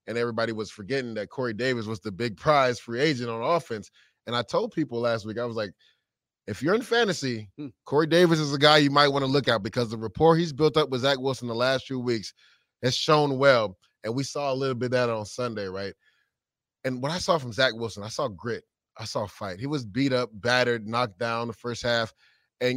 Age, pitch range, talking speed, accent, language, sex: 20-39, 115-140 Hz, 235 wpm, American, English, male